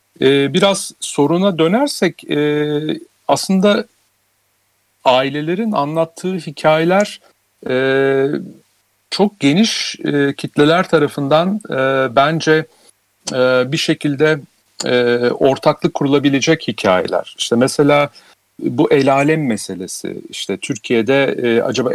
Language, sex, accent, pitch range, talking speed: Turkish, male, native, 110-145 Hz, 70 wpm